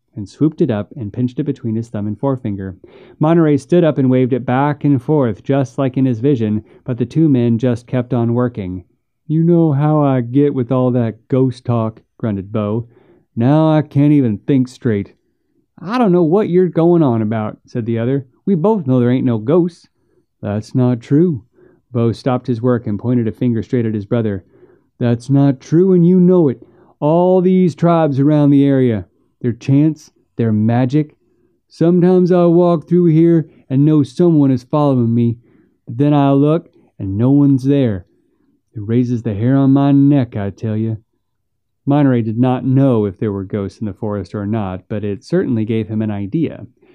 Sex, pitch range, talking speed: male, 110-150 Hz, 195 wpm